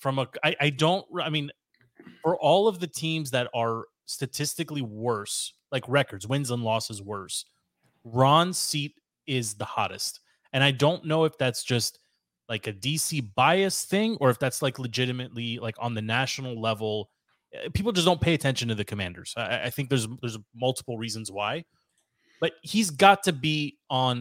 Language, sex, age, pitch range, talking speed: English, male, 30-49, 115-145 Hz, 175 wpm